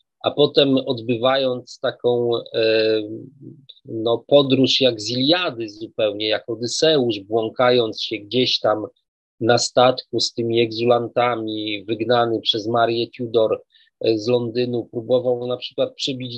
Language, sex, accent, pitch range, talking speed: Polish, male, native, 120-160 Hz, 110 wpm